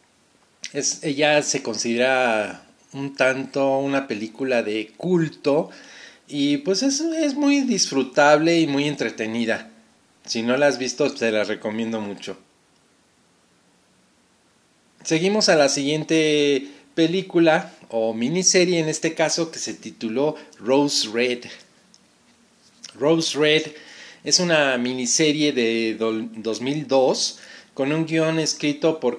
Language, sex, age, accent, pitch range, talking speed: Spanish, male, 40-59, Mexican, 125-170 Hz, 110 wpm